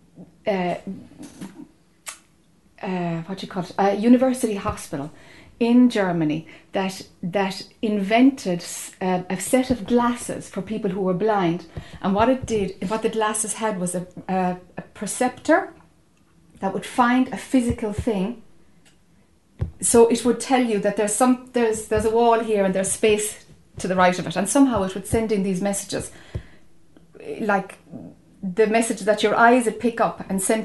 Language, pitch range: English, 190-230 Hz